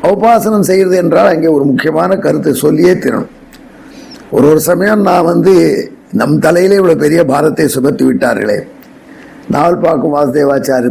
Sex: male